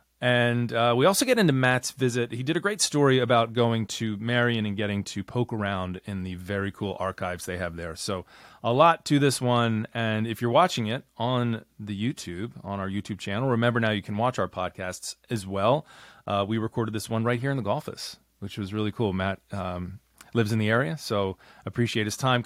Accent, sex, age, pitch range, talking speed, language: American, male, 30-49, 105-130 Hz, 215 wpm, English